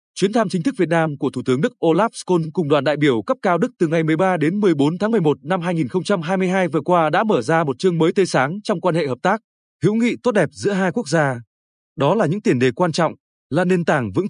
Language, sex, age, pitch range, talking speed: Vietnamese, male, 20-39, 155-205 Hz, 260 wpm